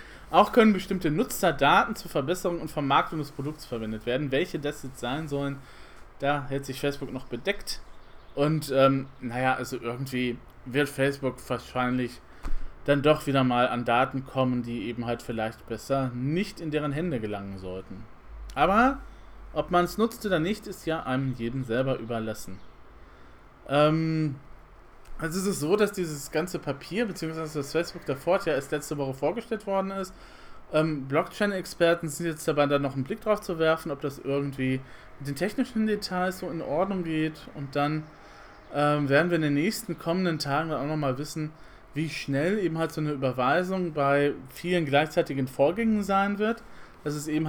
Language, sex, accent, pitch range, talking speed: German, male, German, 130-170 Hz, 170 wpm